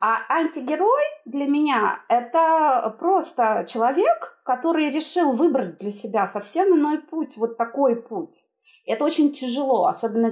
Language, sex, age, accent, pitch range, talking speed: Russian, female, 30-49, native, 215-275 Hz, 130 wpm